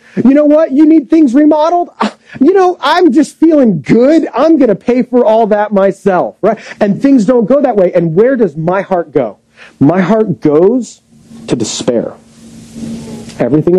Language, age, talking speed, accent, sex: English, 40-59, 175 wpm, American, male